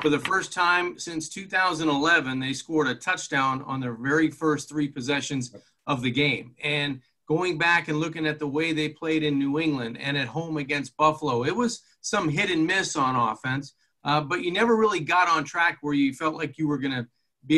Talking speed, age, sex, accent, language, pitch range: 210 wpm, 40-59, male, American, English, 140-170 Hz